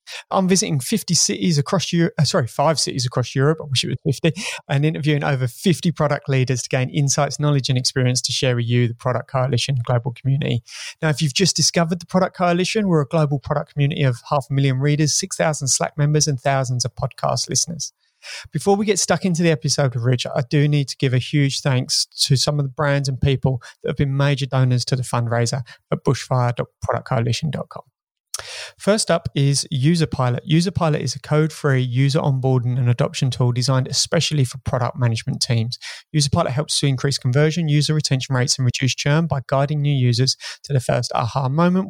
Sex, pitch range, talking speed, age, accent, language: male, 130-155 Hz, 195 wpm, 30-49, British, English